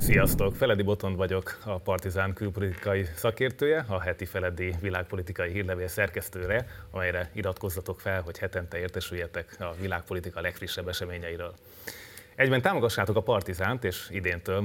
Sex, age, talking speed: male, 30-49, 125 wpm